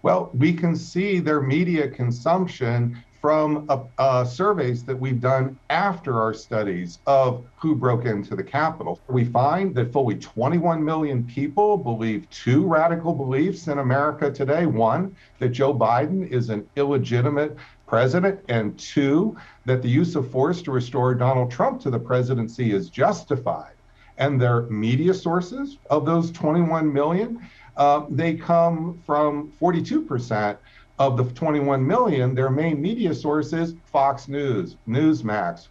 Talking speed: 145 wpm